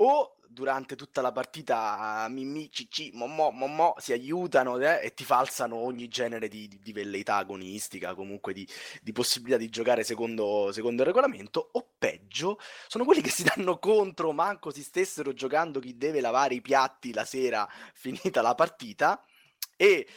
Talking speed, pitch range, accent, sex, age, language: 165 wpm, 115-165 Hz, native, male, 20-39, Italian